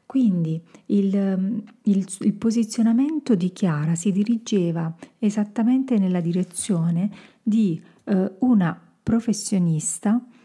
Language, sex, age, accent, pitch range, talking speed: Italian, female, 40-59, native, 175-220 Hz, 85 wpm